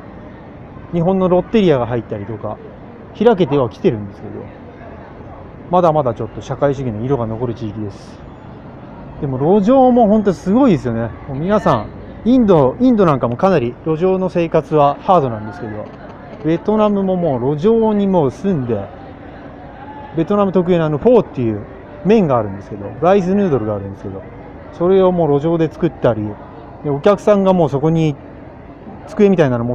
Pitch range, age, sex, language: 110-180 Hz, 30-49, male, Japanese